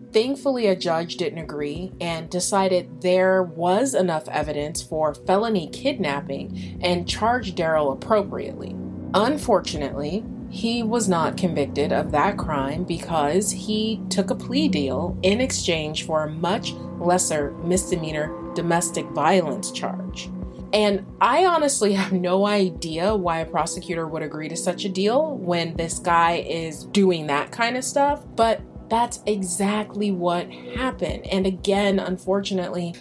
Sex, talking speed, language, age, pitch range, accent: female, 135 wpm, English, 30-49, 155-200 Hz, American